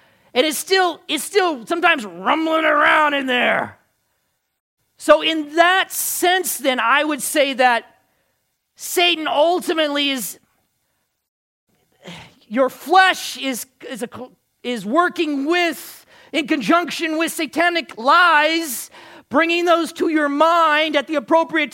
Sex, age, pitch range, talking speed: male, 40-59, 260-330 Hz, 110 wpm